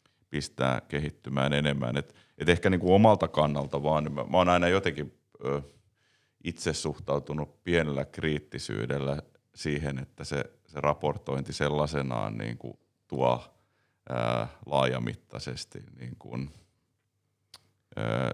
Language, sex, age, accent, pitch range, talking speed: Finnish, male, 30-49, native, 70-80 Hz, 100 wpm